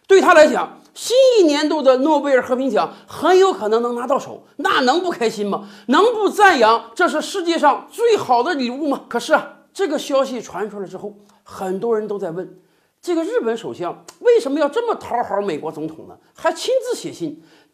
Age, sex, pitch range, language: 50-69, male, 240-375 Hz, Chinese